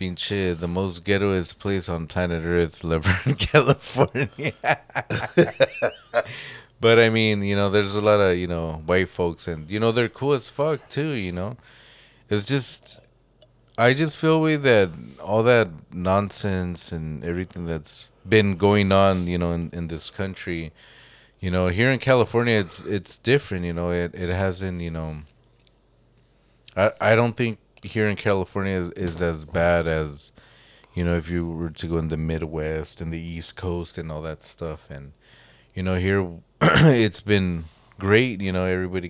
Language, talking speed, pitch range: English, 170 wpm, 85-110 Hz